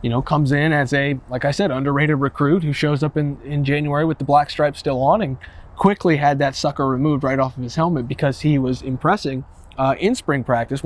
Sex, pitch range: male, 130-165 Hz